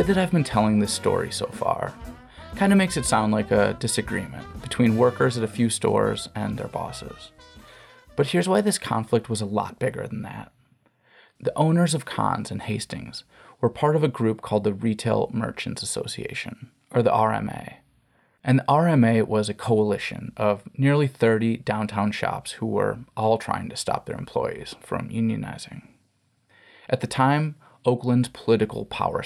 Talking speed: 170 wpm